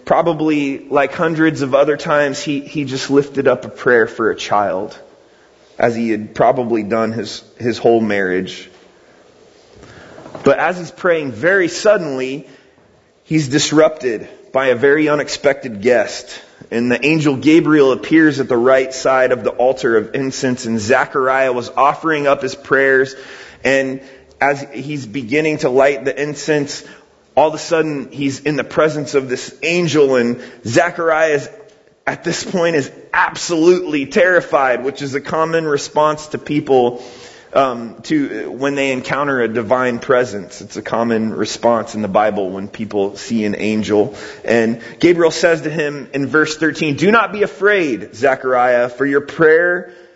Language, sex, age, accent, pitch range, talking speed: English, male, 30-49, American, 125-155 Hz, 155 wpm